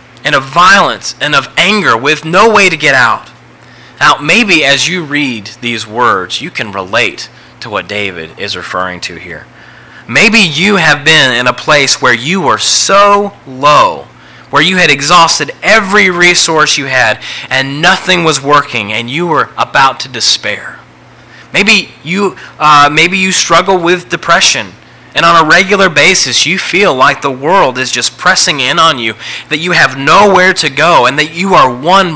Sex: male